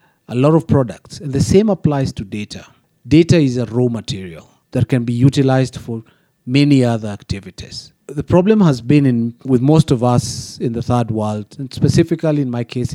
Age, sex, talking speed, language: 40-59, male, 190 wpm, English